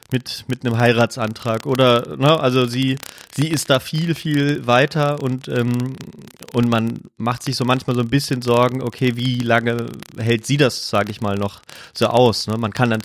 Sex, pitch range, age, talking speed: male, 110-125 Hz, 30-49, 195 wpm